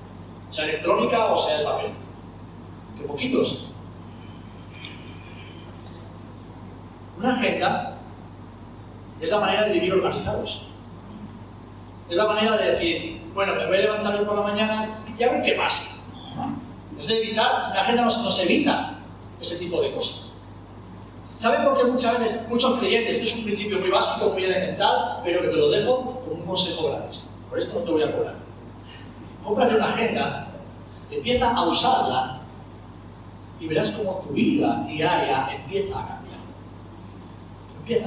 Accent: Spanish